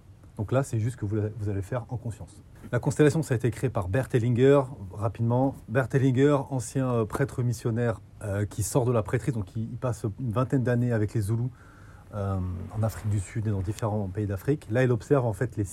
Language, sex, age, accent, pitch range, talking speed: French, male, 30-49, French, 100-130 Hz, 225 wpm